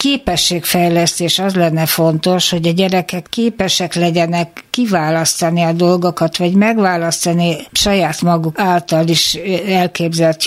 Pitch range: 165-195 Hz